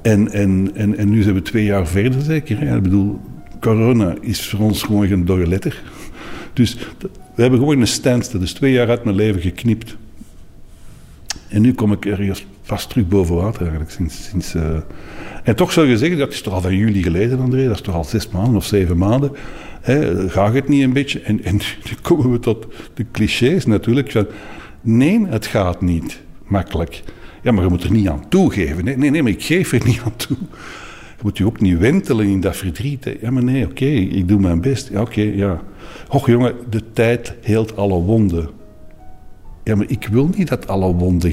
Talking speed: 215 wpm